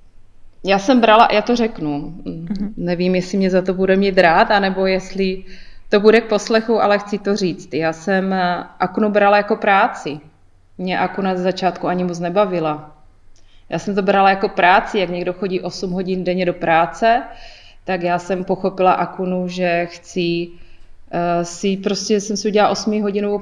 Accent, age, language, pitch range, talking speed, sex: native, 30-49, Czech, 175-205 Hz, 165 wpm, female